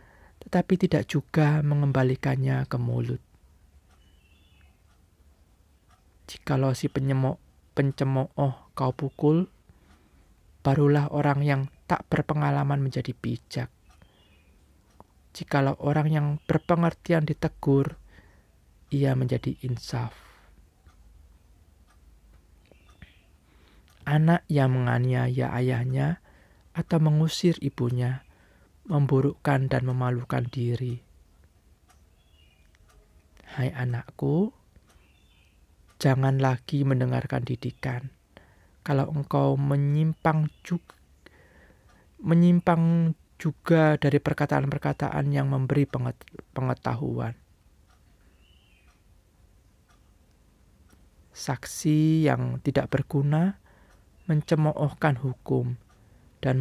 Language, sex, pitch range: Indonesian, male, 90-145 Hz